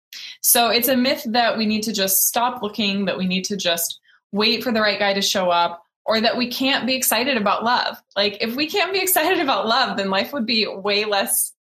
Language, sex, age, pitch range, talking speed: English, female, 20-39, 185-235 Hz, 235 wpm